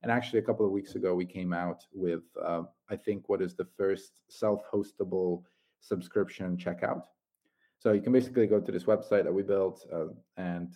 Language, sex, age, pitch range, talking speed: English, male, 30-49, 90-105 Hz, 190 wpm